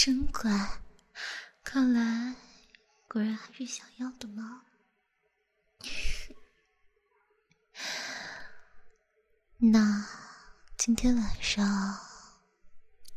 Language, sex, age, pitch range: Chinese, female, 20-39, 205-255 Hz